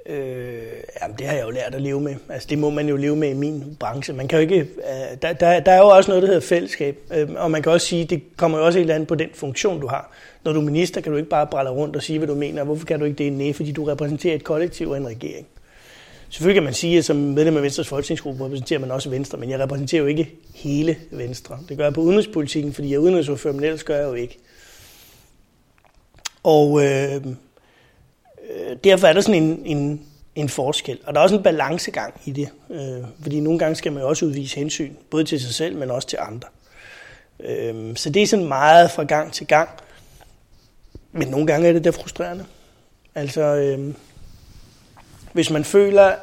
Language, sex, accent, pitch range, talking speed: Danish, male, native, 140-165 Hz, 220 wpm